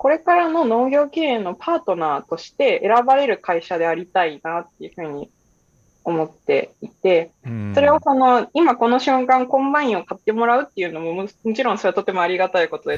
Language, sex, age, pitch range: Japanese, female, 20-39, 180-290 Hz